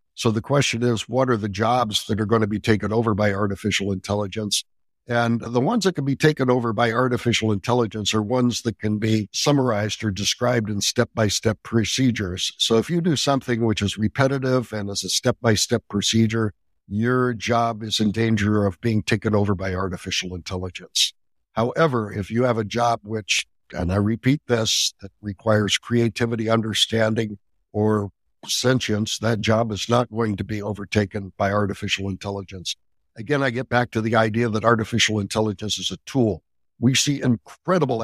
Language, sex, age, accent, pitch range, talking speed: English, male, 60-79, American, 105-120 Hz, 170 wpm